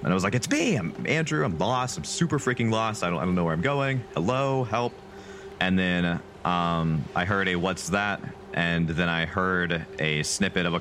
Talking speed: 220 wpm